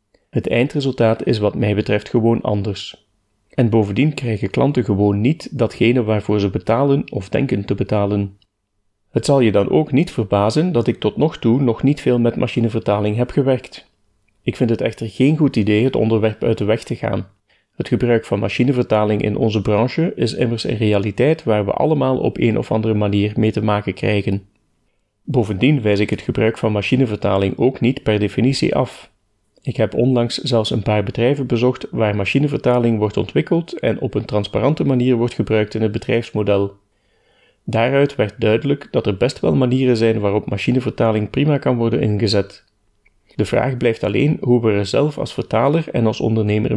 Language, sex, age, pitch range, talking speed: Dutch, male, 30-49, 105-125 Hz, 180 wpm